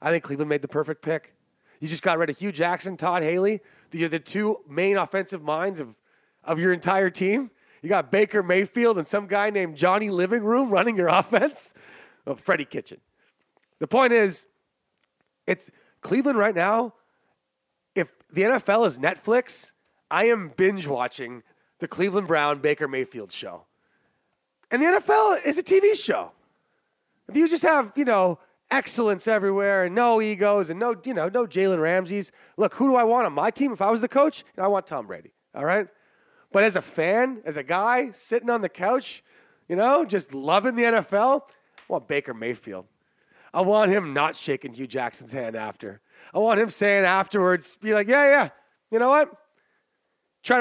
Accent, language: American, English